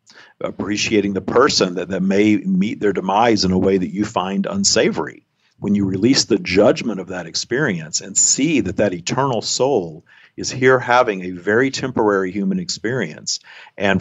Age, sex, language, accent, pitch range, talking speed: 50-69, male, English, American, 95-110 Hz, 165 wpm